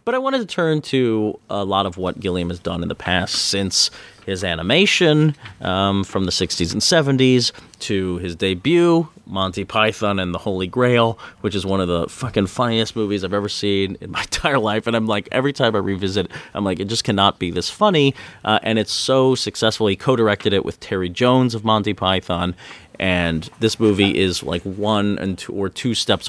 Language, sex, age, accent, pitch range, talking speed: English, male, 30-49, American, 95-115 Hz, 205 wpm